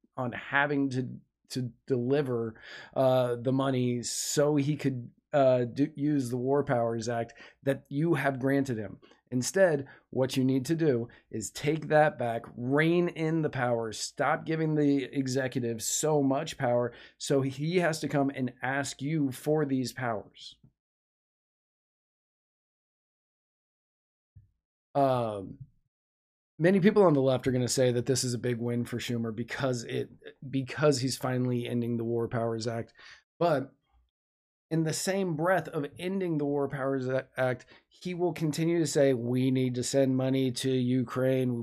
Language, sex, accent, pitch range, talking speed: English, male, American, 120-140 Hz, 155 wpm